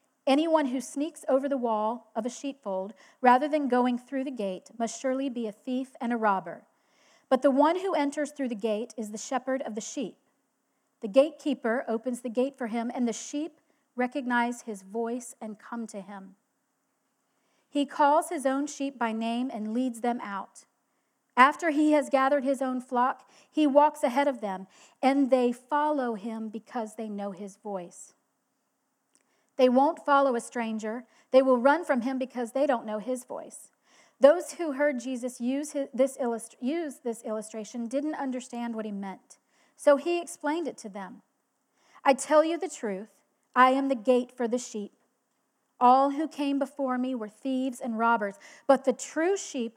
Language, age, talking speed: English, 40-59, 175 wpm